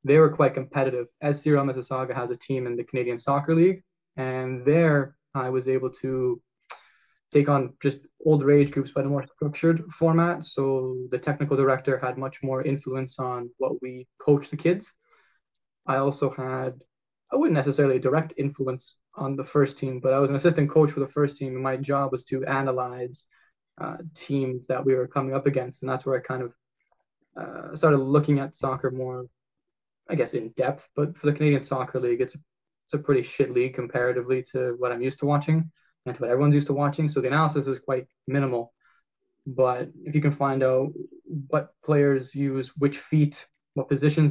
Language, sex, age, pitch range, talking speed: English, male, 20-39, 130-145 Hz, 195 wpm